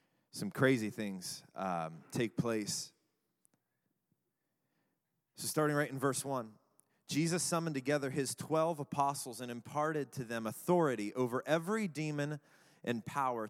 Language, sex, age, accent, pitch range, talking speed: English, male, 30-49, American, 115-155 Hz, 125 wpm